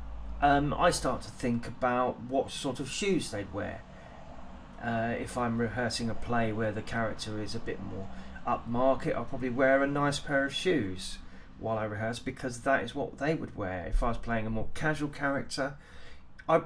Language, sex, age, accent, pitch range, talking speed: English, male, 30-49, British, 105-135 Hz, 190 wpm